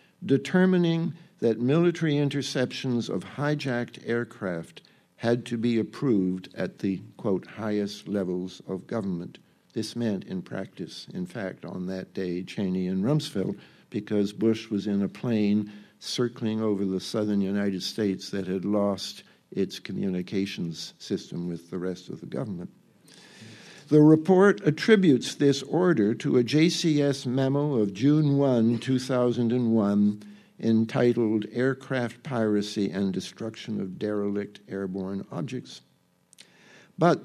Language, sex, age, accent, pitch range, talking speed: English, male, 60-79, American, 100-140 Hz, 125 wpm